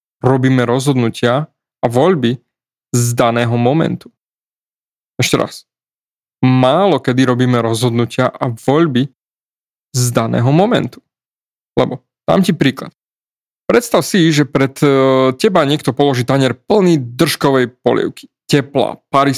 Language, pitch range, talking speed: Slovak, 125-165 Hz, 110 wpm